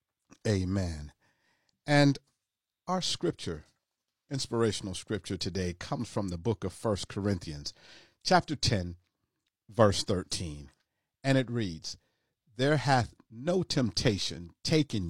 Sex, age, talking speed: male, 50-69, 105 wpm